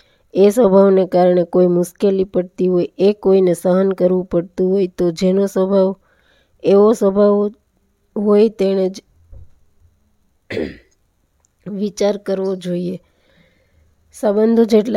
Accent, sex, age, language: native, female, 20-39, Gujarati